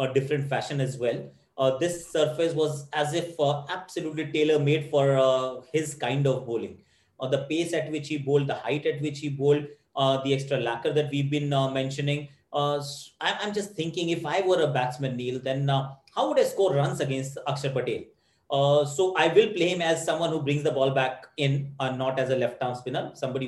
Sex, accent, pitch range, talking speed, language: male, Indian, 140-175 Hz, 215 wpm, English